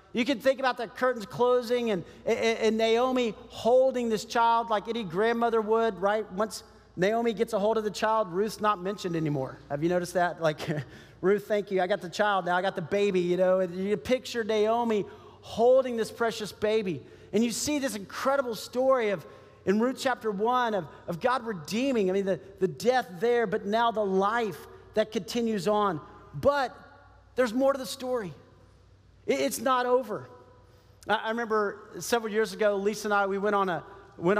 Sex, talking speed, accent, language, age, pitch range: male, 190 wpm, American, English, 40-59, 190-235 Hz